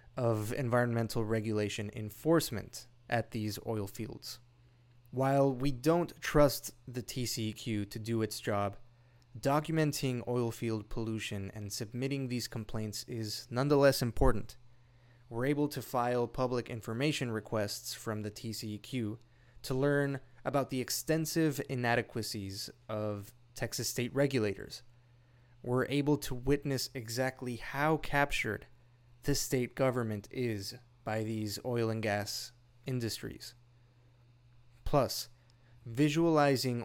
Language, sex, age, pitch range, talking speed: English, male, 20-39, 110-130 Hz, 110 wpm